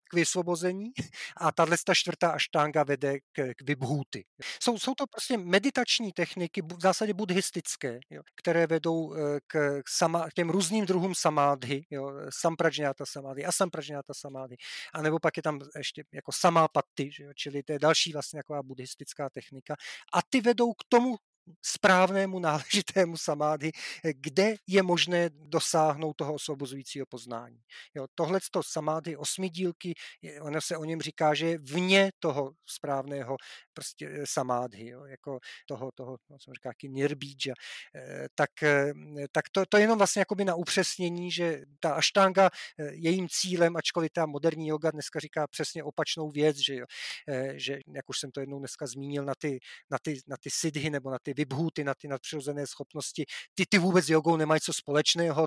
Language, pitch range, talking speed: Slovak, 140-175 Hz, 150 wpm